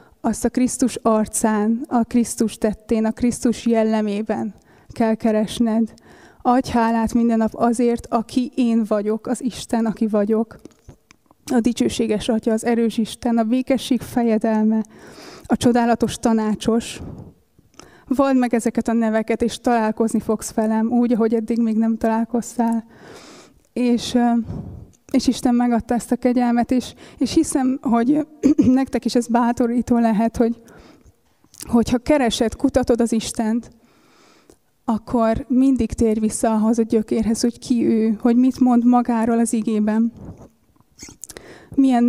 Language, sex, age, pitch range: Hungarian, female, 20-39, 225-245 Hz